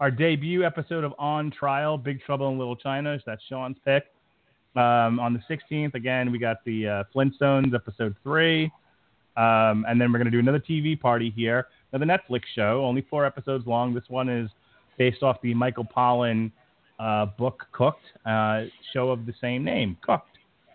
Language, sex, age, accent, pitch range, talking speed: English, male, 30-49, American, 120-140 Hz, 180 wpm